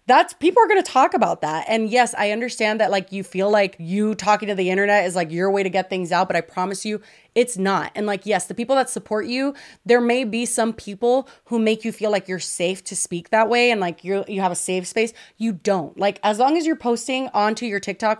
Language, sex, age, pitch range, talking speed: English, female, 20-39, 185-230 Hz, 260 wpm